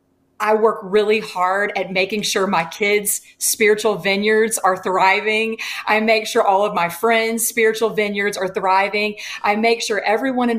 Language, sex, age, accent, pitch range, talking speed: English, female, 30-49, American, 205-260 Hz, 165 wpm